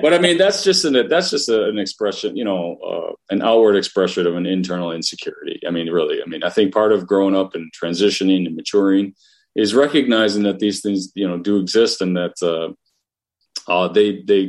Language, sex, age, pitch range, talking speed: English, male, 40-59, 95-125 Hz, 205 wpm